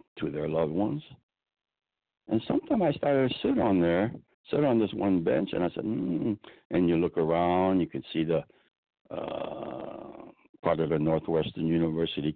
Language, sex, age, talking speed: English, male, 60-79, 170 wpm